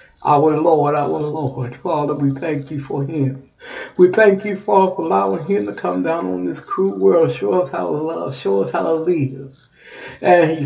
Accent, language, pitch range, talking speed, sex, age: American, English, 130-155 Hz, 205 wpm, male, 60-79